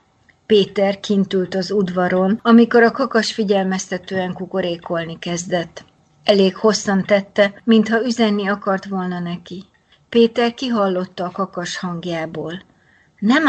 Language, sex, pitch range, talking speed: Hungarian, female, 175-220 Hz, 105 wpm